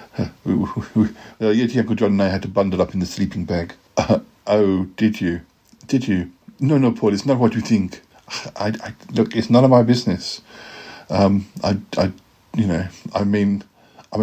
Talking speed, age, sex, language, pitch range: 185 wpm, 60-79, male, English, 95-115 Hz